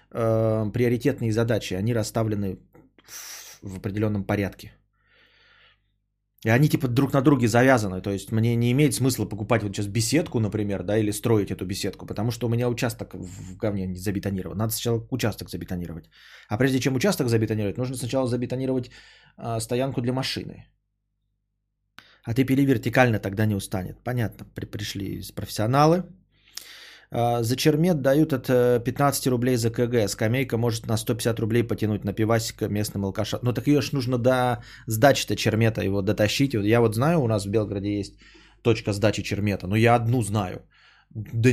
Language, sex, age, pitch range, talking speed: Bulgarian, male, 20-39, 105-125 Hz, 160 wpm